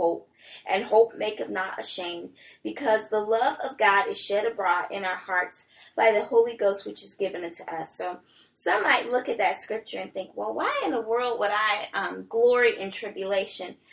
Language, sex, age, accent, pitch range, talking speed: English, female, 20-39, American, 200-235 Hz, 200 wpm